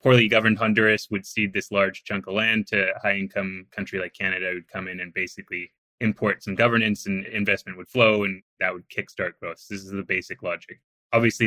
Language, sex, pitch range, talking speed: English, male, 95-115 Hz, 205 wpm